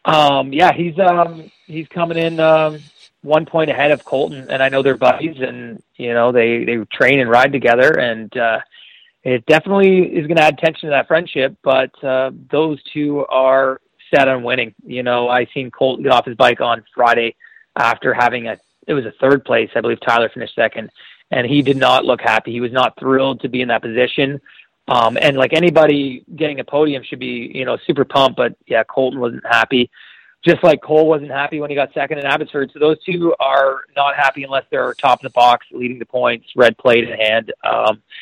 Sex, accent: male, American